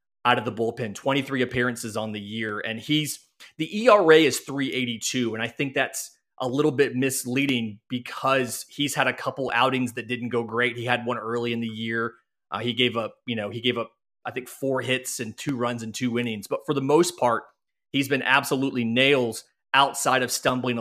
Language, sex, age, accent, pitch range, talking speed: English, male, 30-49, American, 115-135 Hz, 205 wpm